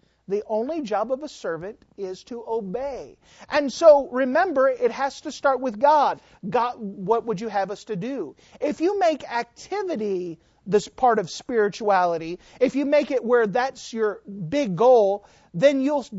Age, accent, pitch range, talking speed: 40-59, American, 200-280 Hz, 165 wpm